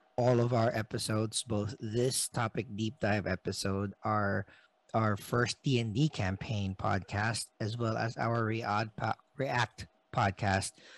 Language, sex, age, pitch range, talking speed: English, male, 50-69, 105-125 Hz, 130 wpm